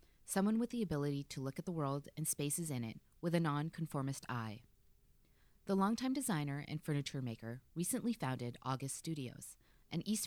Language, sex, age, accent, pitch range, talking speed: English, female, 30-49, American, 125-170 Hz, 170 wpm